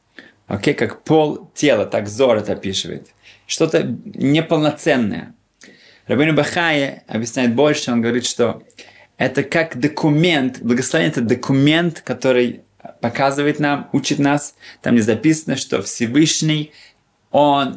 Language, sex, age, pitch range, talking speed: Russian, male, 20-39, 120-155 Hz, 115 wpm